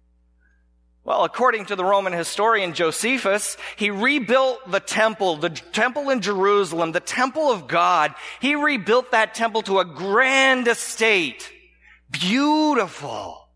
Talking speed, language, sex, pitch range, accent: 125 wpm, English, male, 170-225 Hz, American